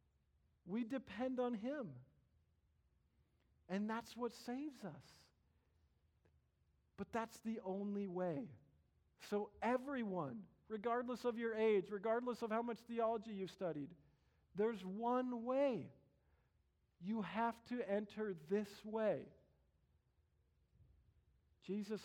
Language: English